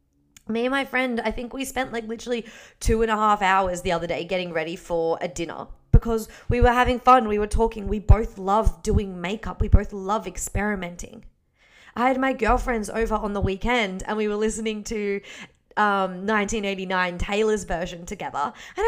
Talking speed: 190 wpm